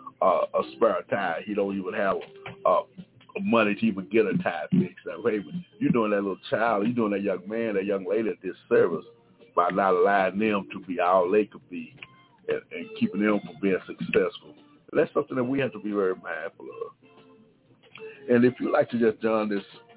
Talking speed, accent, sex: 220 wpm, American, male